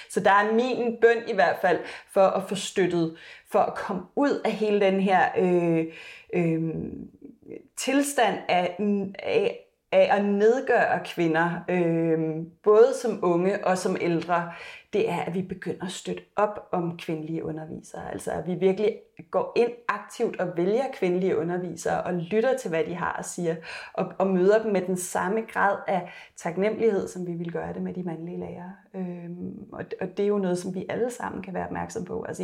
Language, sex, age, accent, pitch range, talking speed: Danish, female, 30-49, native, 180-225 Hz, 185 wpm